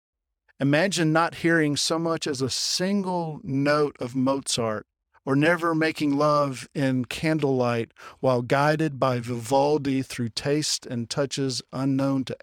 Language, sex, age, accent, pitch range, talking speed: English, male, 50-69, American, 115-145 Hz, 130 wpm